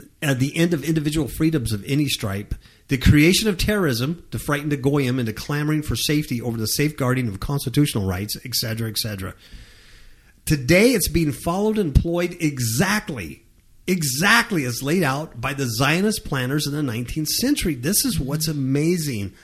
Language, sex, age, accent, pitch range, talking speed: English, male, 50-69, American, 115-180 Hz, 160 wpm